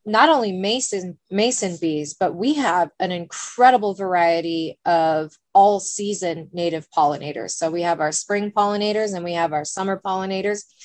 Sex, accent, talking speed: female, American, 155 wpm